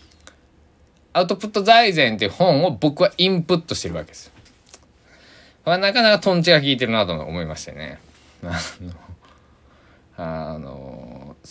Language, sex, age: Japanese, male, 20-39